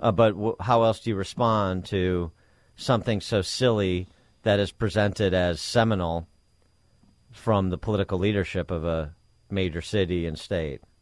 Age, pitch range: 40-59, 100-155 Hz